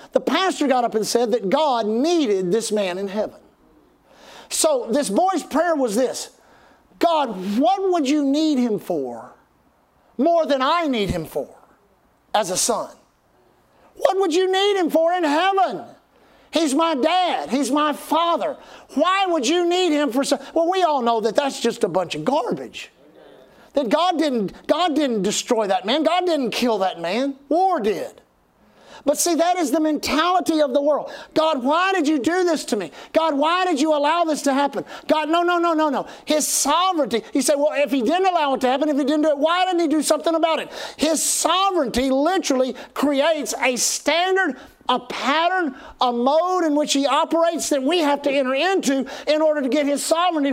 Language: English